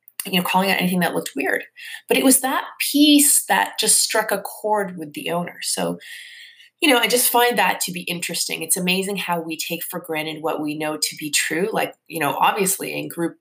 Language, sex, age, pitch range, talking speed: English, female, 20-39, 170-245 Hz, 225 wpm